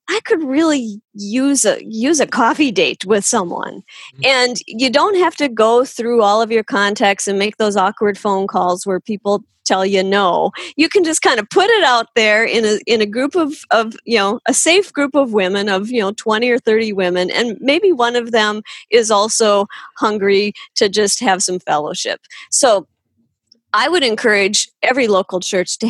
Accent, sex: American, female